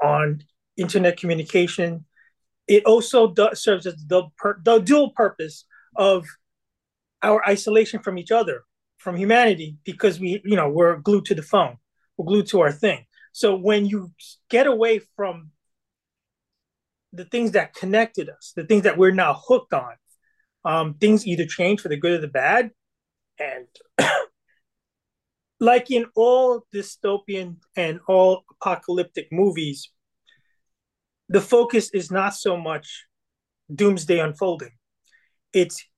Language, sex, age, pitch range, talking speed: English, male, 30-49, 170-215 Hz, 135 wpm